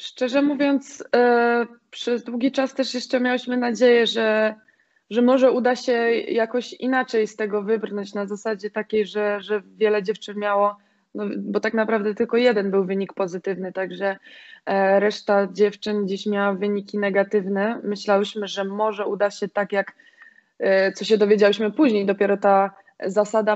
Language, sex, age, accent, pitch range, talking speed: Polish, female, 20-39, native, 205-245 Hz, 145 wpm